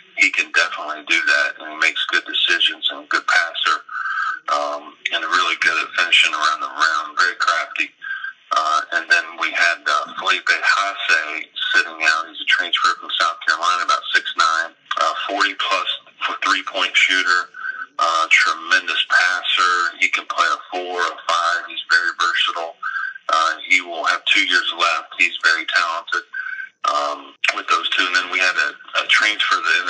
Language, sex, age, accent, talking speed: English, male, 30-49, American, 155 wpm